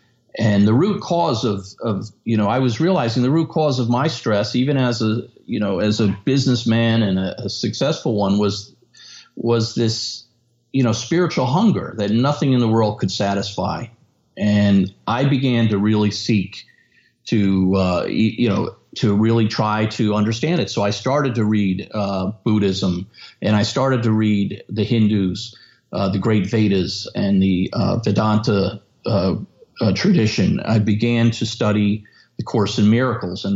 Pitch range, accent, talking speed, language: 105-120 Hz, American, 170 wpm, English